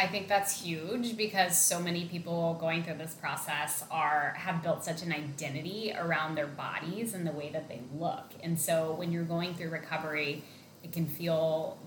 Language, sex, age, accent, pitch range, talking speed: English, female, 10-29, American, 150-175 Hz, 185 wpm